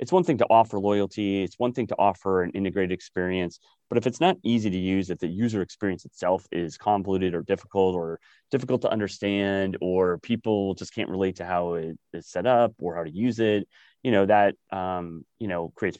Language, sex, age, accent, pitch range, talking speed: English, male, 30-49, American, 90-100 Hz, 215 wpm